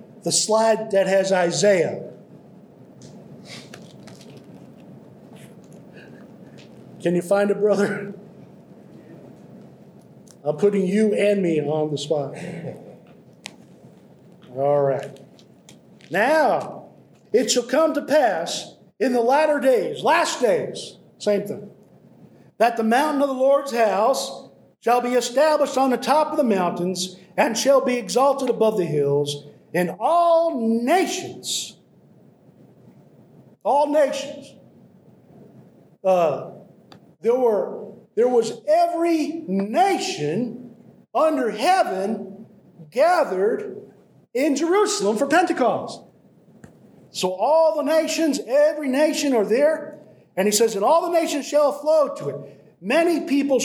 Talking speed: 110 wpm